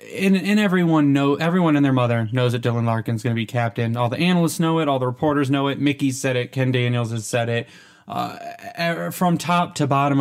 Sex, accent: male, American